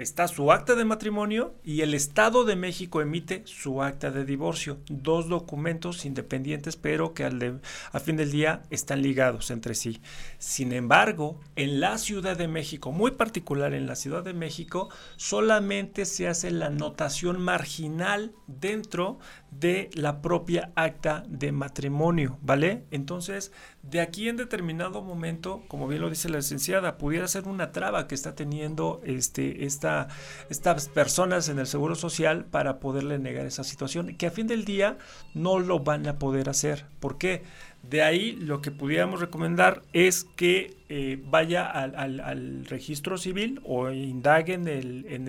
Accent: Mexican